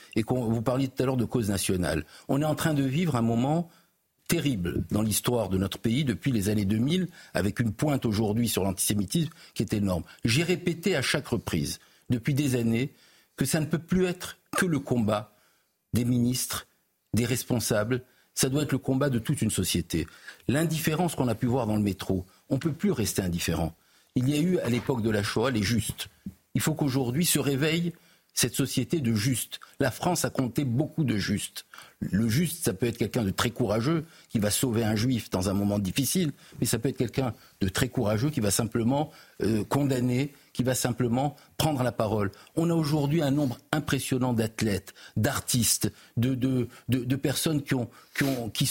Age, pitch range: 50-69, 110-150 Hz